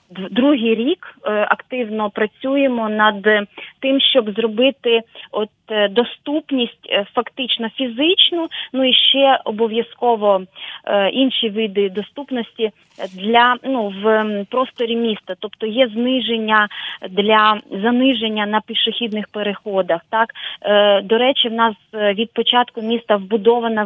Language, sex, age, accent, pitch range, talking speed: Ukrainian, female, 20-39, native, 205-250 Hz, 105 wpm